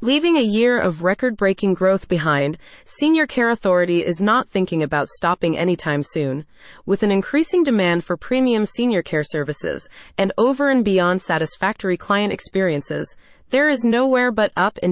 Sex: female